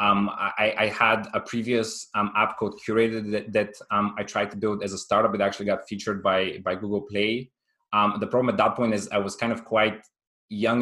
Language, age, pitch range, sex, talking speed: English, 20-39, 95-110 Hz, male, 225 wpm